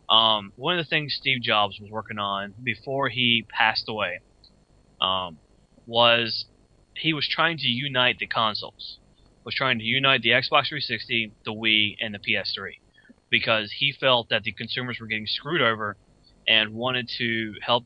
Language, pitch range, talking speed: English, 110-125 Hz, 170 wpm